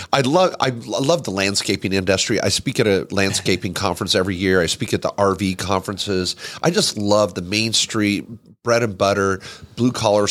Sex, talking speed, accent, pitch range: male, 185 wpm, American, 100-130 Hz